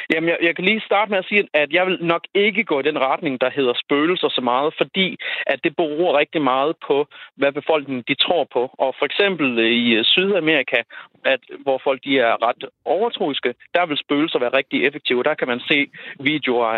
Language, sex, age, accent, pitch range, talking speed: Danish, male, 30-49, native, 130-155 Hz, 205 wpm